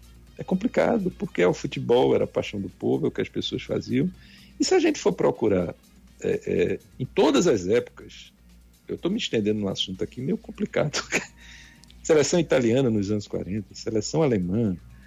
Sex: male